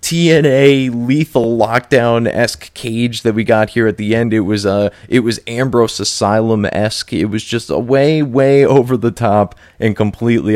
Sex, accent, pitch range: male, American, 95-120 Hz